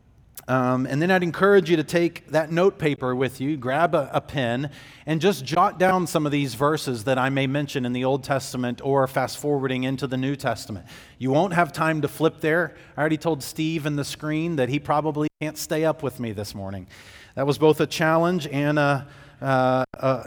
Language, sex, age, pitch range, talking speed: English, male, 40-59, 125-160 Hz, 205 wpm